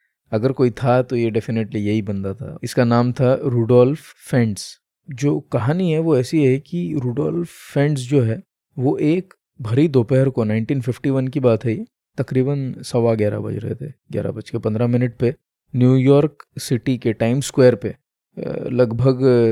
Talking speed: 165 wpm